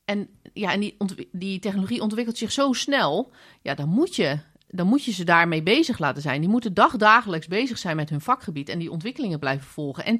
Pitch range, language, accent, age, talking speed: 155-215 Hz, Dutch, Dutch, 30-49, 220 wpm